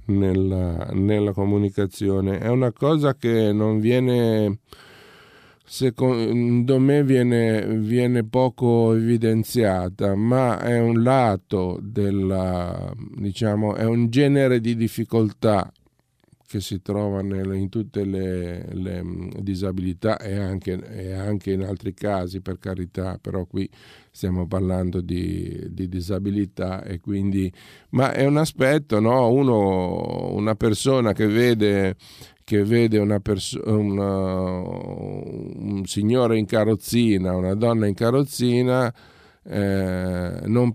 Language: Italian